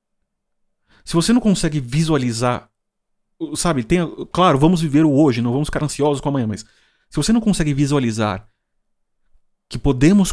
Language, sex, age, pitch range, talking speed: Portuguese, male, 30-49, 135-205 Hz, 145 wpm